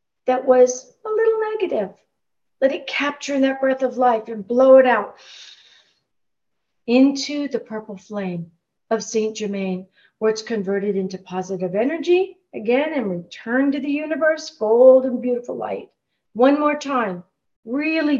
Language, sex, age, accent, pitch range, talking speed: English, female, 50-69, American, 200-260 Hz, 145 wpm